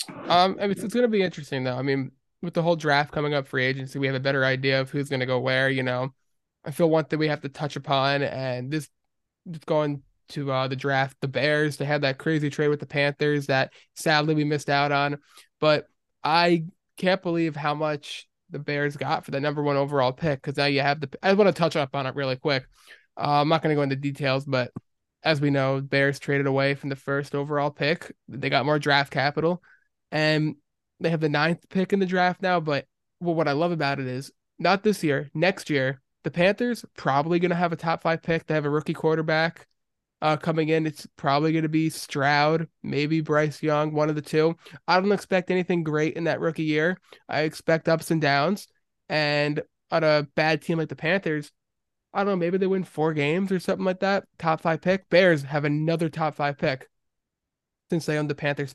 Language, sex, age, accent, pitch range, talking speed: English, male, 20-39, American, 140-165 Hz, 220 wpm